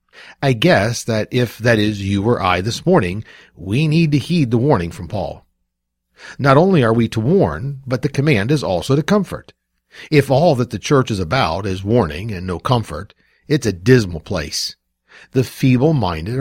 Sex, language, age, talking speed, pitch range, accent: male, English, 50-69, 185 wpm, 95-135 Hz, American